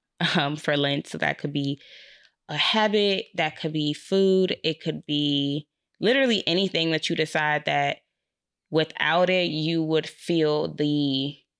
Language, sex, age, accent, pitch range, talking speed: English, female, 20-39, American, 150-170 Hz, 145 wpm